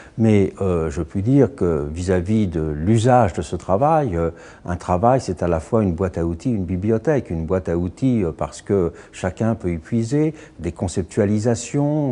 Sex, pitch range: male, 90-120 Hz